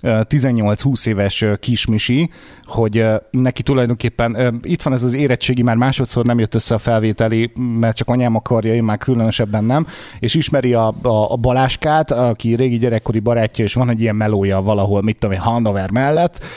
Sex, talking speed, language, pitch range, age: male, 170 wpm, Hungarian, 115-140 Hz, 30-49